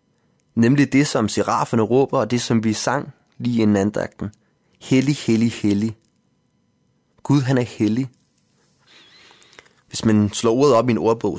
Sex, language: male, Danish